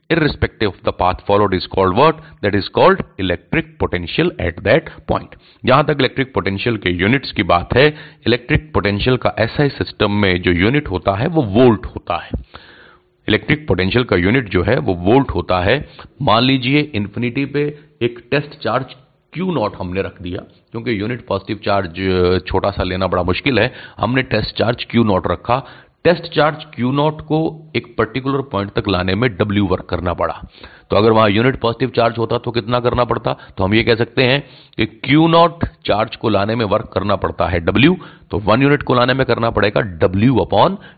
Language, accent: Hindi, native